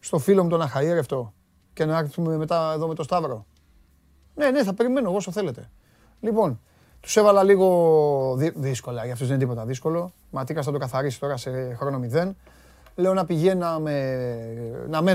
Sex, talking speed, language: male, 165 wpm, Greek